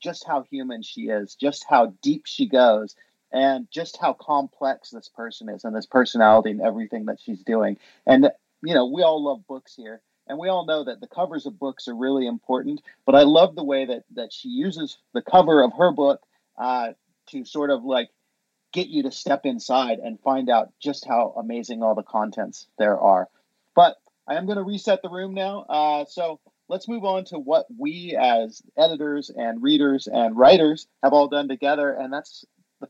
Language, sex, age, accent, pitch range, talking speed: English, male, 40-59, American, 130-185 Hz, 200 wpm